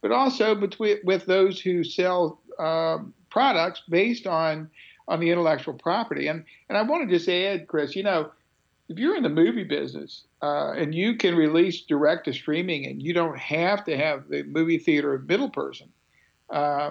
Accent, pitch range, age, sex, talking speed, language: American, 155-195 Hz, 60-79, male, 180 wpm, English